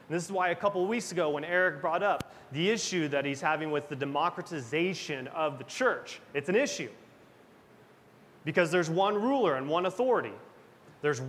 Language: English